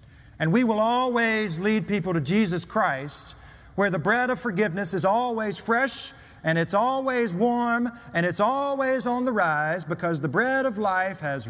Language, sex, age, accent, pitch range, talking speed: English, male, 40-59, American, 145-215 Hz, 170 wpm